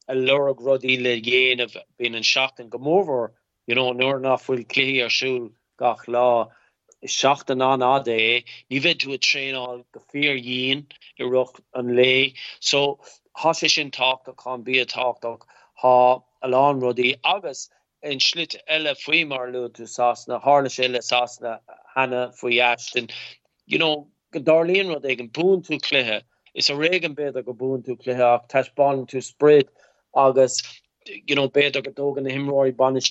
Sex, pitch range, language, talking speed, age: male, 125-145 Hz, English, 180 wpm, 30-49